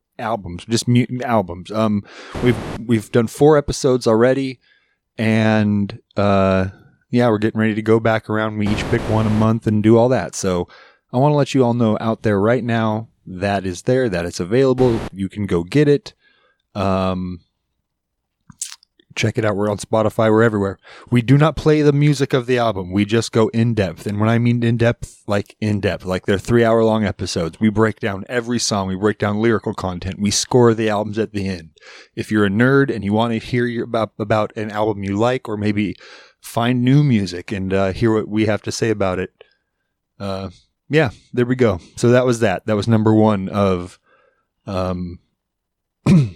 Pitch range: 100-120 Hz